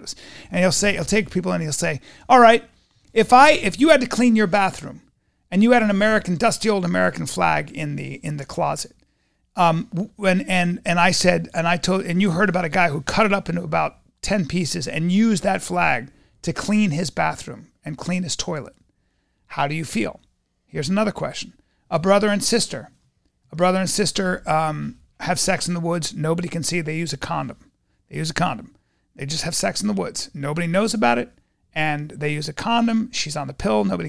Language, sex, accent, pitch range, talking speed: English, male, American, 155-210 Hz, 215 wpm